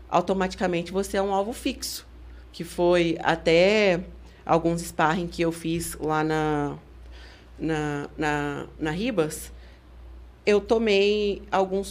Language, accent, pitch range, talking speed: Portuguese, Brazilian, 165-225 Hz, 115 wpm